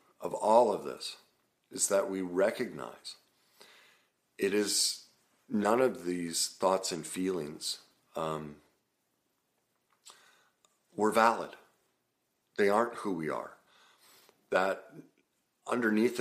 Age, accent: 50-69, American